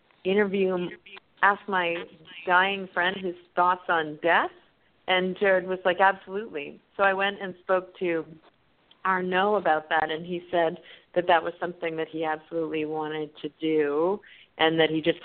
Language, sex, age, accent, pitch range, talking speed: English, female, 40-59, American, 160-185 Hz, 160 wpm